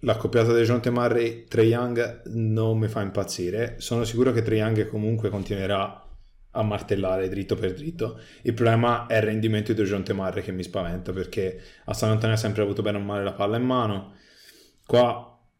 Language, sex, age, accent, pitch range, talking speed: Italian, male, 20-39, native, 95-115 Hz, 180 wpm